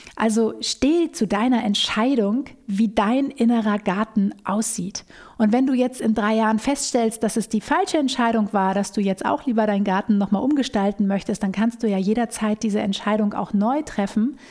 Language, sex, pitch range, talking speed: German, female, 195-235 Hz, 180 wpm